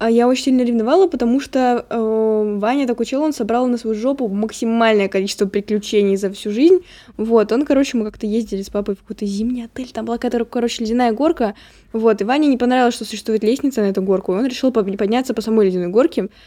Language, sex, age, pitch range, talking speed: Russian, female, 10-29, 205-250 Hz, 210 wpm